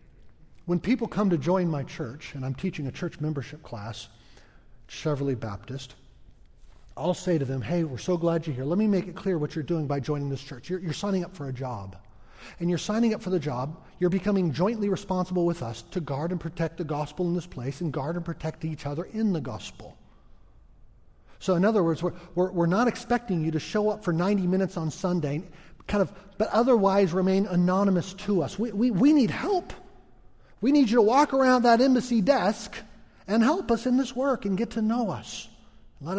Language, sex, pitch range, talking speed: English, male, 140-200 Hz, 210 wpm